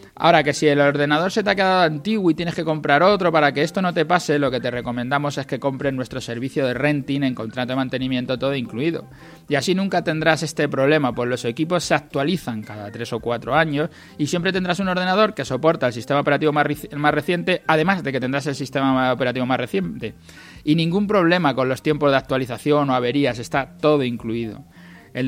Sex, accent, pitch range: male, Spanish, 125-155 Hz